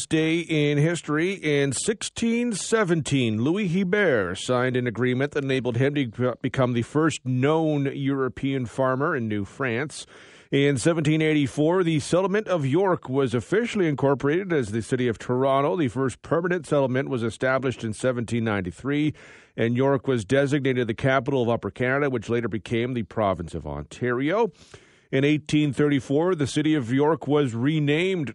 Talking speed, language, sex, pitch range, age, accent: 145 wpm, English, male, 120-155 Hz, 40-59, American